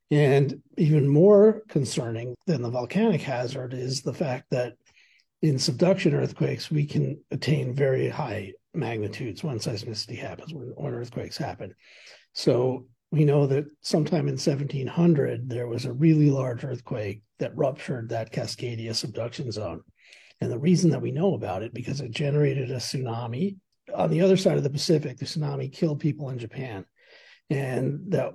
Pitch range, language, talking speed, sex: 125-155 Hz, English, 155 wpm, male